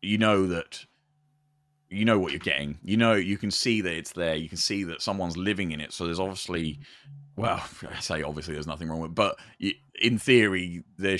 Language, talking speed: English, 215 wpm